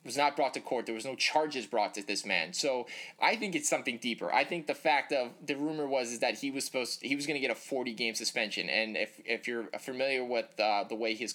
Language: English